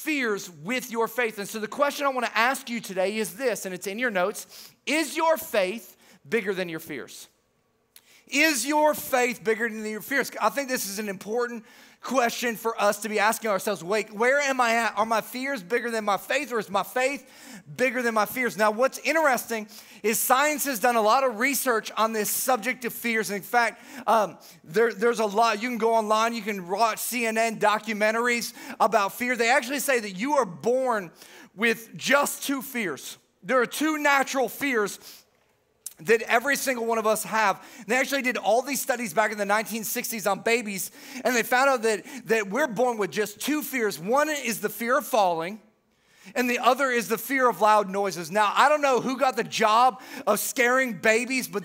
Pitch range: 210-255 Hz